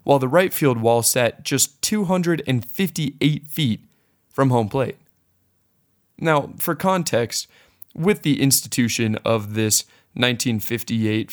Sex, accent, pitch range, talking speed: male, American, 110-145 Hz, 110 wpm